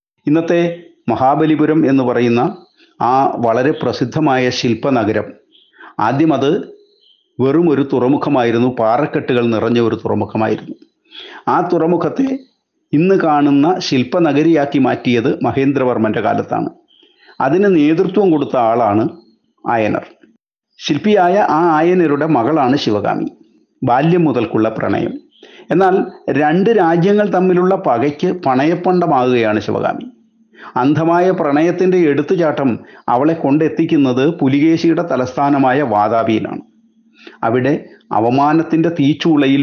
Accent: native